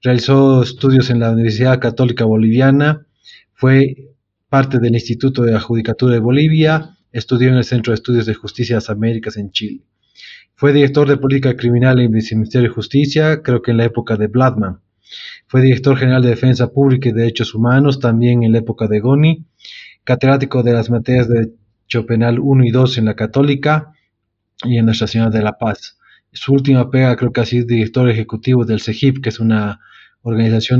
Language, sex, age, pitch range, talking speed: Spanish, male, 30-49, 115-135 Hz, 185 wpm